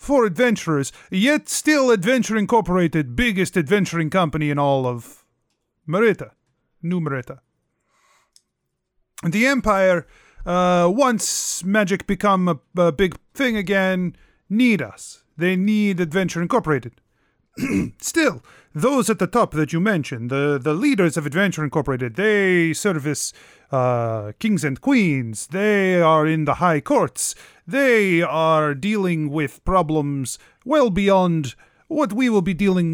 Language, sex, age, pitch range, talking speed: English, male, 30-49, 155-215 Hz, 130 wpm